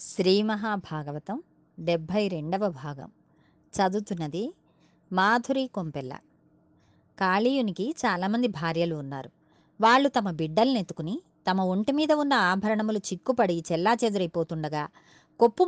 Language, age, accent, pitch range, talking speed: Telugu, 30-49, native, 165-235 Hz, 90 wpm